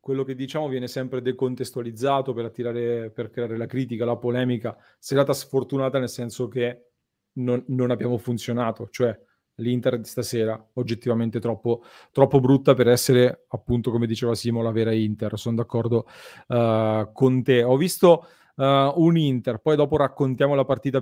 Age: 30-49